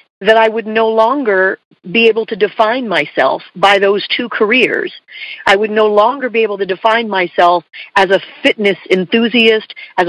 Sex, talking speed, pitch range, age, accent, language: female, 165 wpm, 195-265 Hz, 50-69, American, English